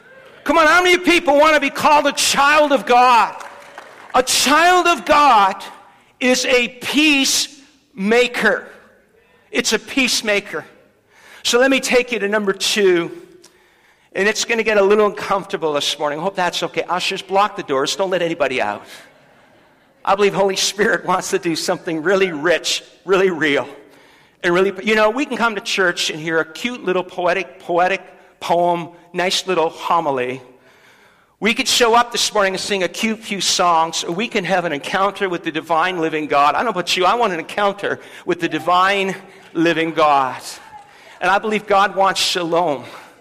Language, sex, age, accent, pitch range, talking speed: English, male, 50-69, American, 175-240 Hz, 180 wpm